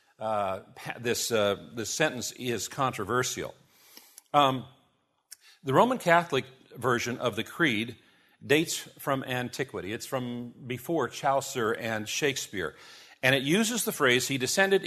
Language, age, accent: English, 50-69, American